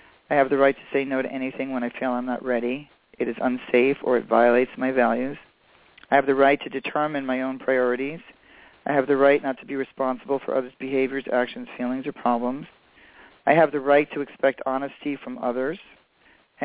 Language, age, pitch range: English, 40-59, 130-145 Hz